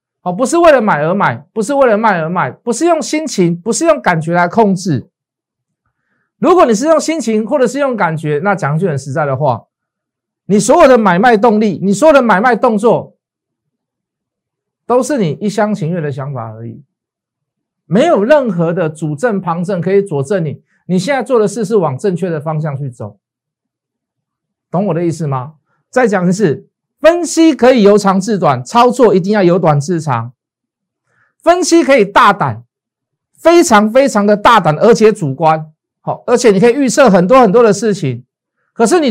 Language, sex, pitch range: Chinese, male, 155-240 Hz